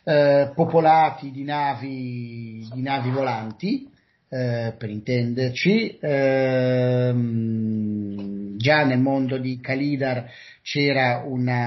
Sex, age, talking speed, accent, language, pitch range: male, 40-59, 95 wpm, native, Italian, 125-150 Hz